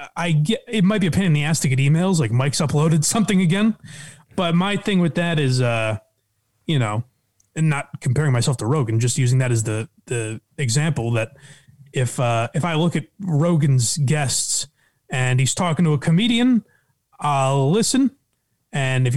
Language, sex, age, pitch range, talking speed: English, male, 30-49, 135-195 Hz, 185 wpm